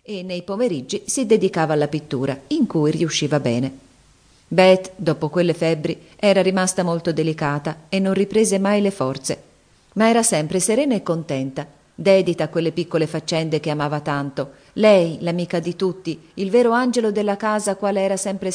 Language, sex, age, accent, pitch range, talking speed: Italian, female, 40-59, native, 150-195 Hz, 165 wpm